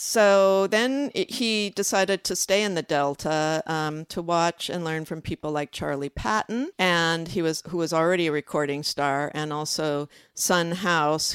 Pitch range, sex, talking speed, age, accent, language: 155-185 Hz, female, 165 wpm, 50-69, American, English